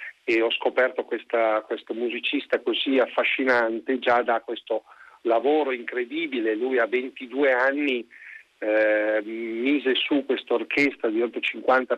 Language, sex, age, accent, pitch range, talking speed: Italian, male, 50-69, native, 120-150 Hz, 125 wpm